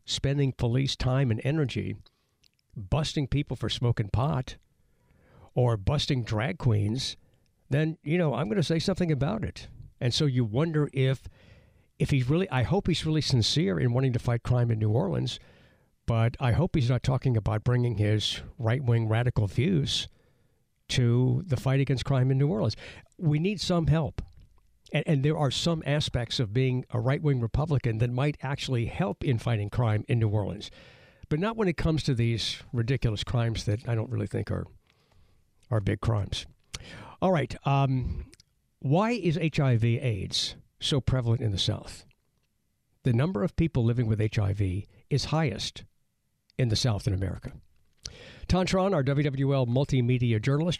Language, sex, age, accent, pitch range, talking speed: English, male, 60-79, American, 110-145 Hz, 165 wpm